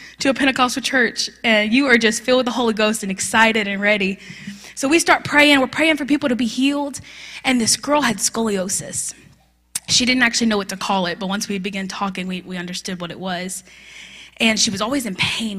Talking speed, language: 225 wpm, English